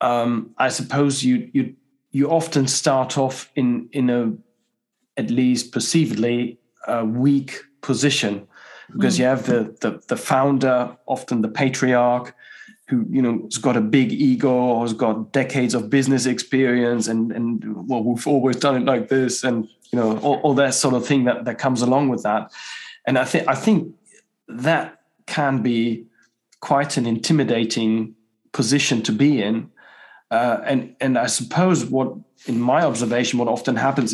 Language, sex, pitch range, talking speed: English, male, 120-140 Hz, 165 wpm